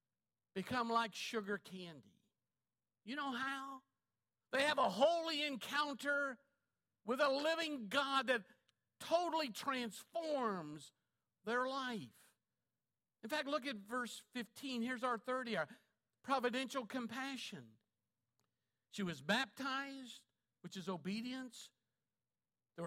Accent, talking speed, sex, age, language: American, 105 wpm, male, 50-69, English